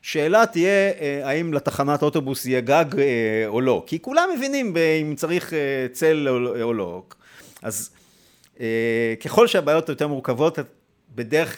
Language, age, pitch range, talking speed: Hebrew, 50-69, 115-155 Hz, 120 wpm